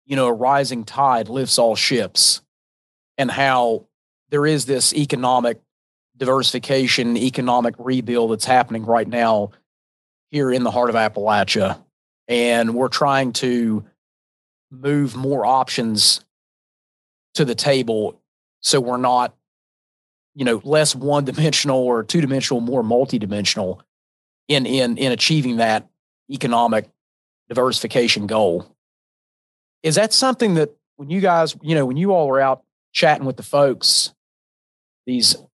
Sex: male